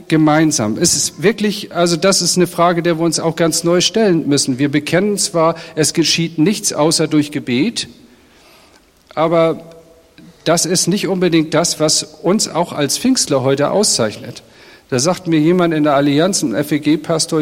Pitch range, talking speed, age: 140-170 Hz, 165 wpm, 50-69